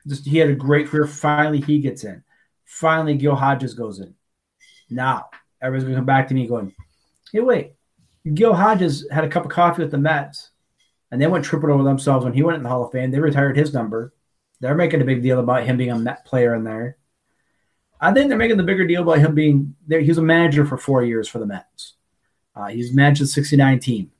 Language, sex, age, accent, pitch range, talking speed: English, male, 30-49, American, 125-170 Hz, 235 wpm